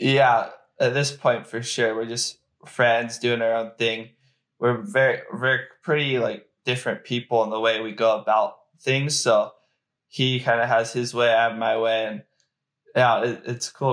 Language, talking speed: English, 185 wpm